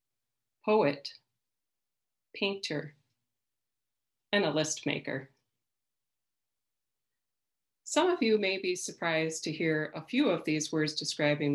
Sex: female